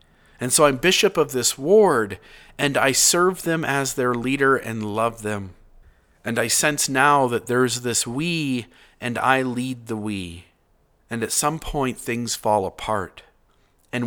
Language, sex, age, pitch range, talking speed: English, male, 40-59, 115-150 Hz, 160 wpm